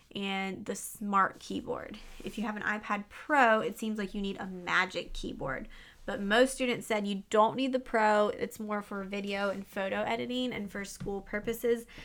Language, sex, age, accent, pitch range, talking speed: English, female, 20-39, American, 200-250 Hz, 190 wpm